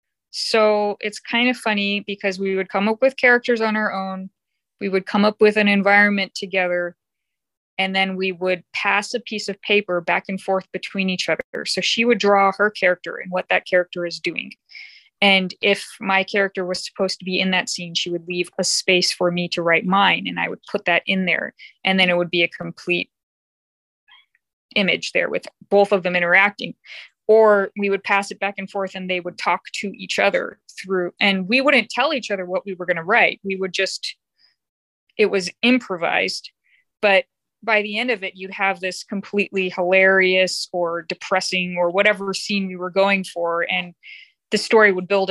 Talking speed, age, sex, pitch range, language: 200 wpm, 20-39, female, 185-215 Hz, English